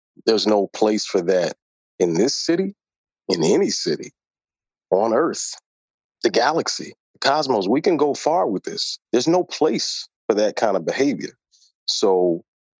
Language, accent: English, American